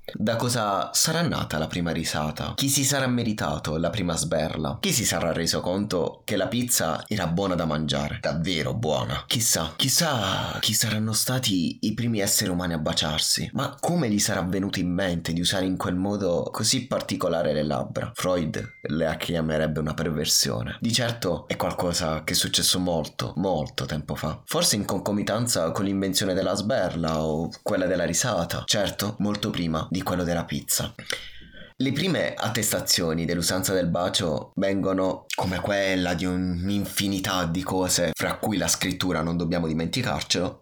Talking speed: 160 wpm